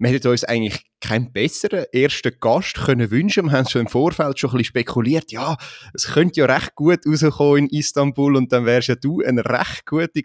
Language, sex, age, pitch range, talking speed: German, male, 30-49, 115-150 Hz, 195 wpm